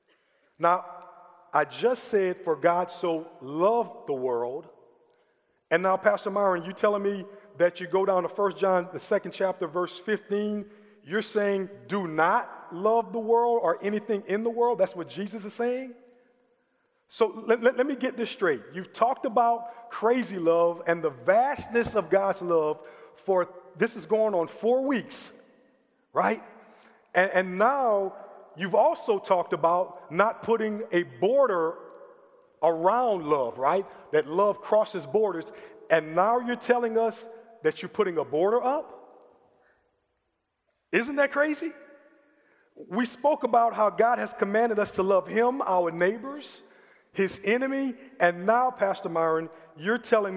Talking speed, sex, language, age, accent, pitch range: 150 wpm, male, English, 40-59, American, 180-240 Hz